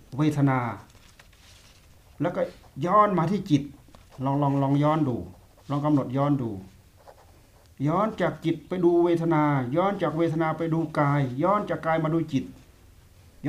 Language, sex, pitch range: Thai, male, 95-150 Hz